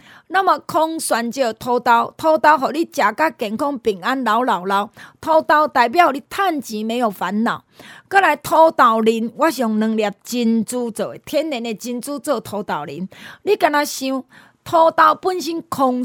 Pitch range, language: 225-315 Hz, Chinese